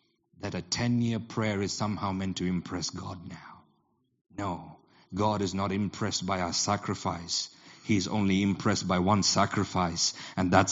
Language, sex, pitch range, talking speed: English, male, 100-135 Hz, 160 wpm